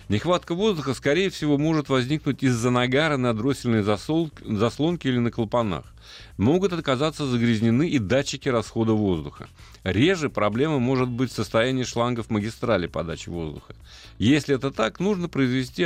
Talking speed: 135 wpm